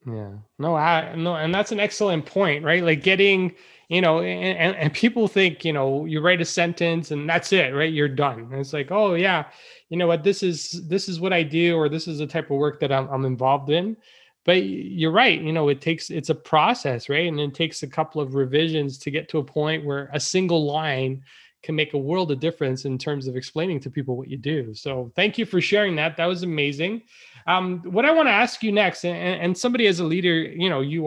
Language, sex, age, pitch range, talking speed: English, male, 20-39, 145-180 Hz, 240 wpm